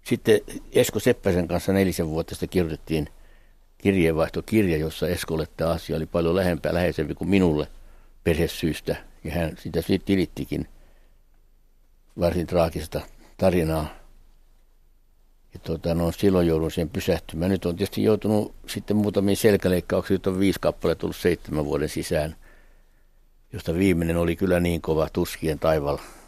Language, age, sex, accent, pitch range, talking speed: Finnish, 60-79, male, native, 75-95 Hz, 130 wpm